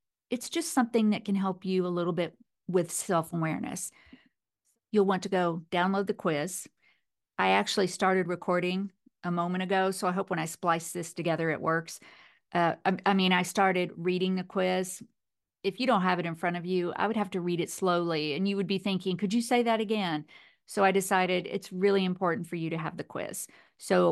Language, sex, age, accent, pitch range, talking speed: English, female, 50-69, American, 175-210 Hz, 210 wpm